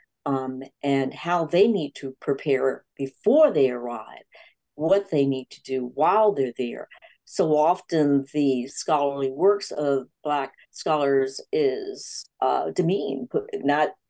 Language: English